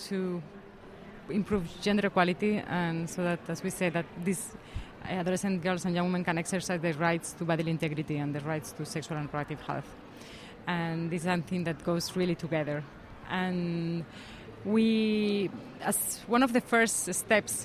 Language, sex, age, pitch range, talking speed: English, female, 20-39, 165-195 Hz, 165 wpm